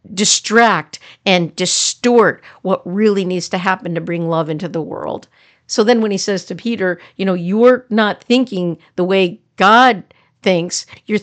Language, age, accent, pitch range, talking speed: English, 50-69, American, 175-215 Hz, 165 wpm